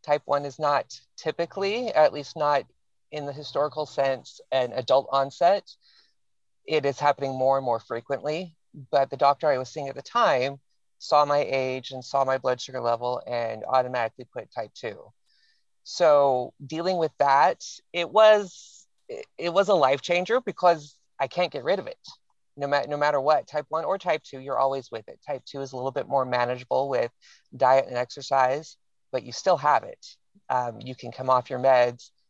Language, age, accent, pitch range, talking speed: English, 30-49, American, 125-160 Hz, 185 wpm